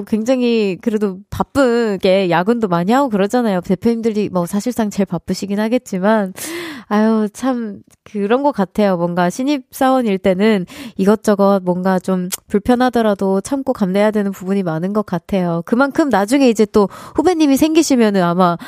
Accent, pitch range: native, 190-265 Hz